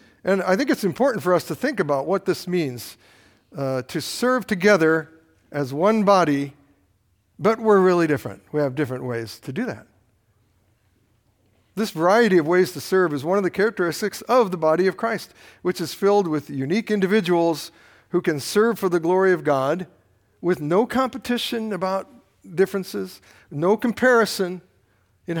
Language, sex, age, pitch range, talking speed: English, male, 60-79, 130-195 Hz, 165 wpm